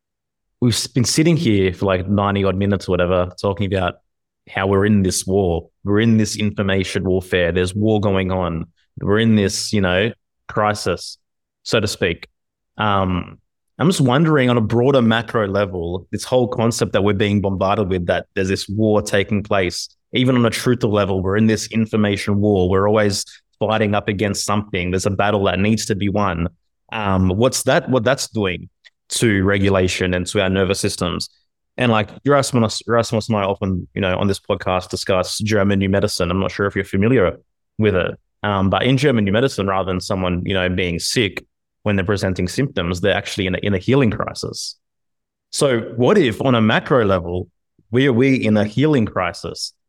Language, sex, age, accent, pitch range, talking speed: English, male, 20-39, Australian, 95-110 Hz, 190 wpm